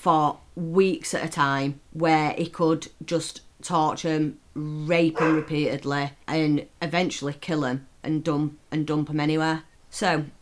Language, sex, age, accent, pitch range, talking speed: English, female, 30-49, British, 150-170 Hz, 145 wpm